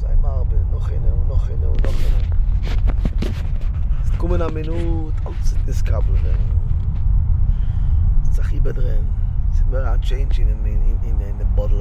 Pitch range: 80-95 Hz